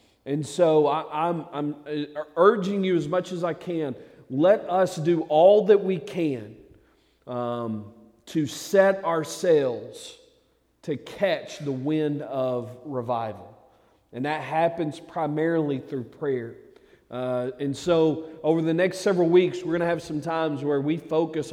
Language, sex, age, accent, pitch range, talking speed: English, male, 40-59, American, 125-155 Hz, 140 wpm